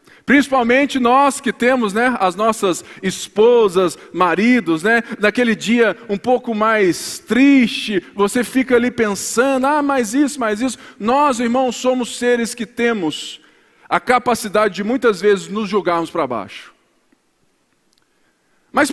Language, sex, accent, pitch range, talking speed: Portuguese, male, Brazilian, 230-280 Hz, 130 wpm